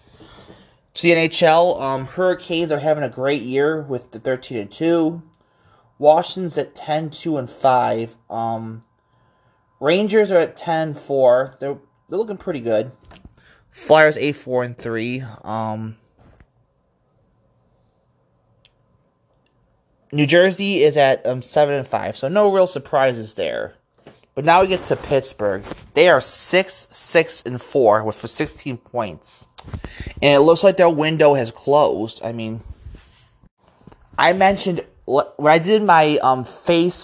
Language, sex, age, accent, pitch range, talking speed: English, male, 20-39, American, 120-155 Hz, 135 wpm